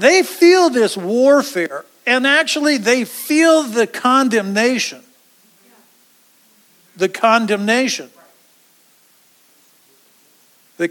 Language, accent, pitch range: English, American, 175-235 Hz